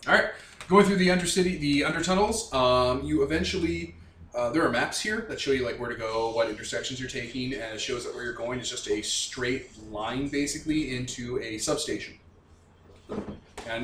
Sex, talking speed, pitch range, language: male, 195 wpm, 110-145 Hz, English